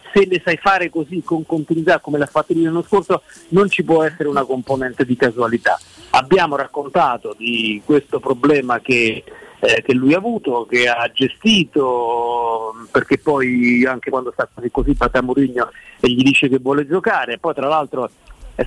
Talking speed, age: 180 wpm, 40-59